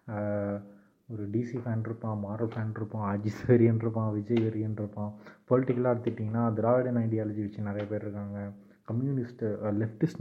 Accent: native